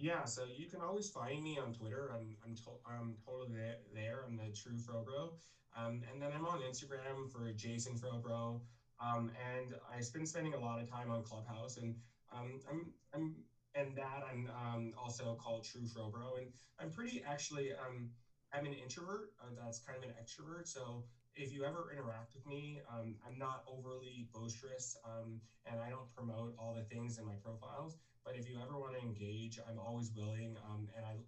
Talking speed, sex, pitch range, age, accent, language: 195 wpm, male, 115-135 Hz, 20-39, American, English